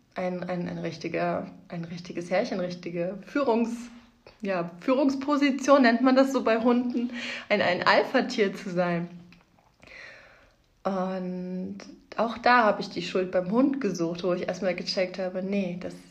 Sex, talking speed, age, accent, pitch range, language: female, 145 wpm, 30-49, German, 175-205 Hz, German